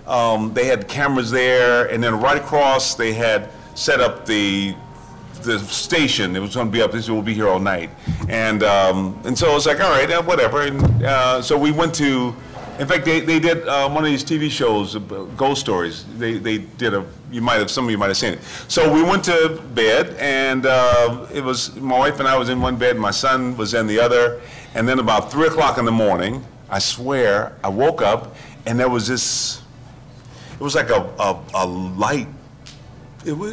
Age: 40-59